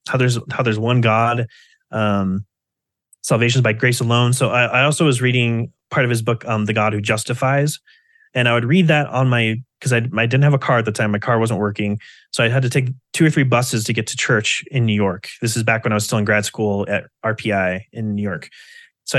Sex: male